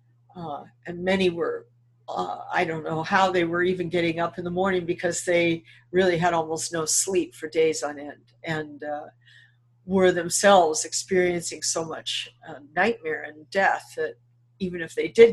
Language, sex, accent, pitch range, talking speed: English, female, American, 145-185 Hz, 170 wpm